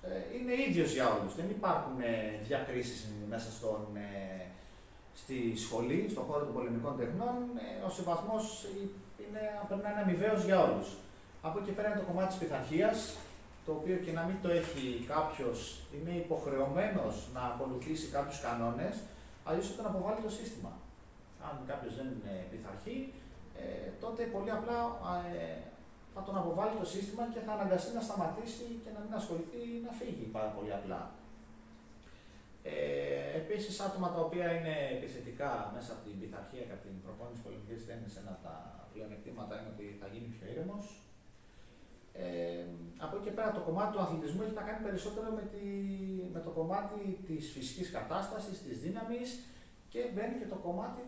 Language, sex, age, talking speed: Greek, male, 30-49, 165 wpm